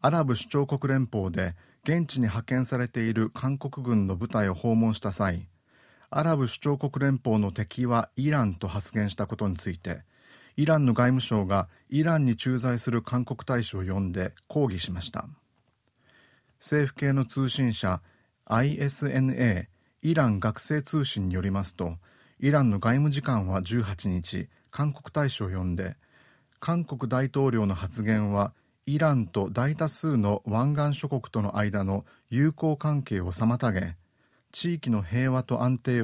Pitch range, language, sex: 100-135 Hz, Japanese, male